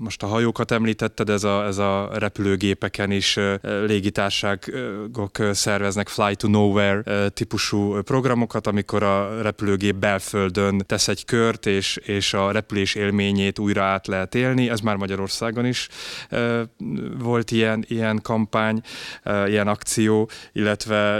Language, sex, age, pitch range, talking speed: Hungarian, male, 20-39, 100-115 Hz, 125 wpm